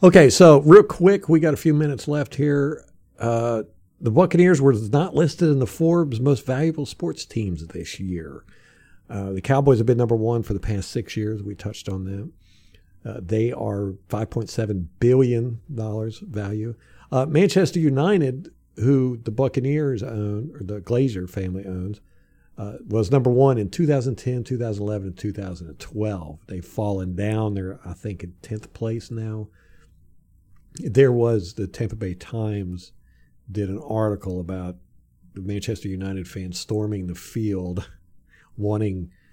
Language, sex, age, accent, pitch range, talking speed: English, male, 50-69, American, 90-120 Hz, 145 wpm